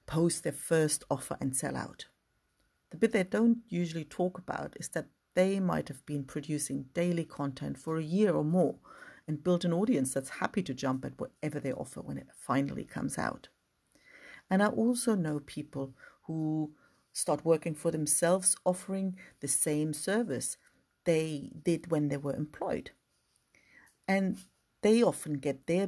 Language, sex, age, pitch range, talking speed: English, female, 50-69, 145-185 Hz, 160 wpm